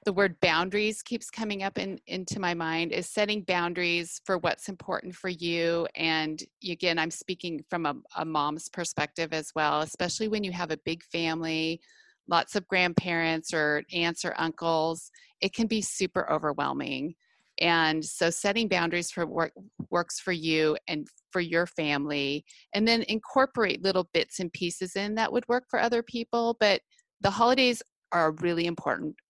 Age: 30-49